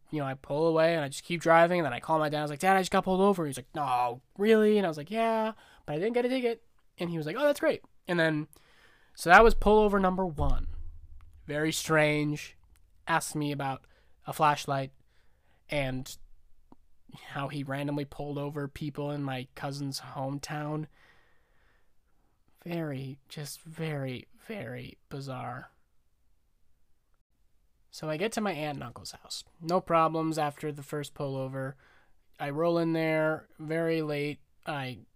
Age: 20-39